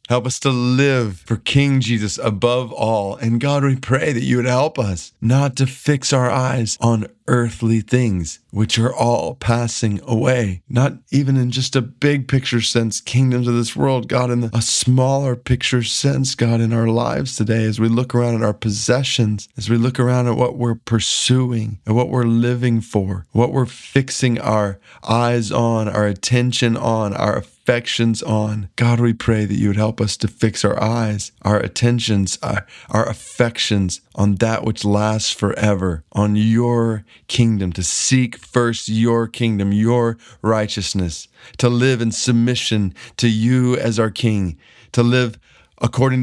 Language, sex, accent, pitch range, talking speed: English, male, American, 105-125 Hz, 170 wpm